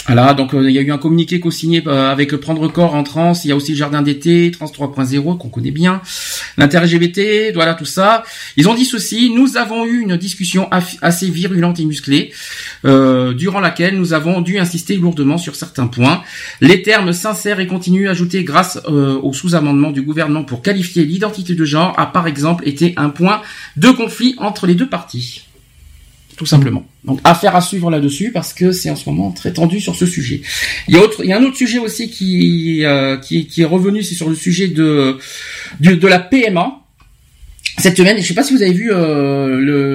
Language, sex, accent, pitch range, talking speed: French, male, French, 140-185 Hz, 220 wpm